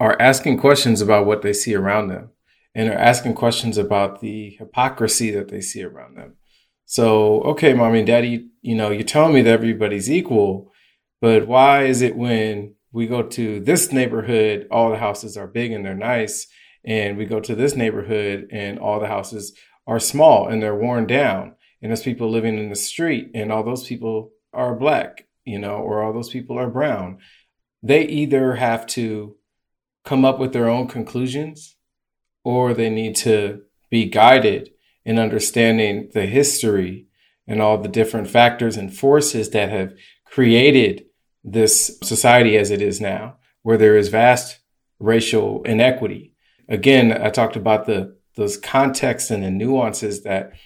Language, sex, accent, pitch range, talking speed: English, male, American, 105-125 Hz, 170 wpm